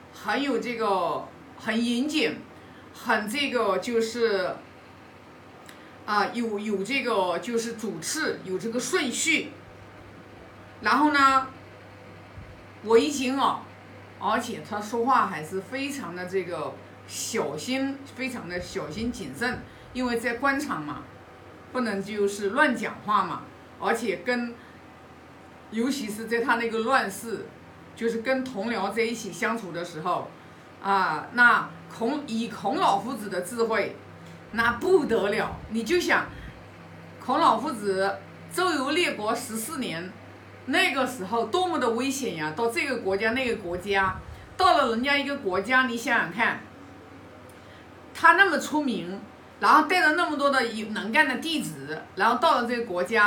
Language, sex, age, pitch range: Chinese, female, 50-69, 200-270 Hz